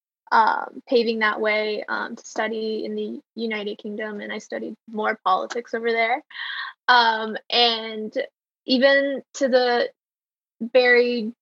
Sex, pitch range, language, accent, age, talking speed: female, 225-260 Hz, English, American, 10-29, 120 wpm